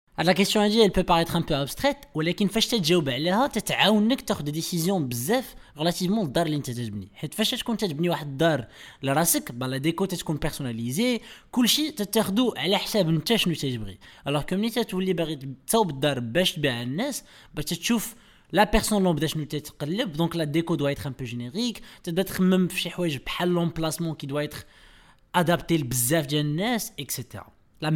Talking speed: 165 wpm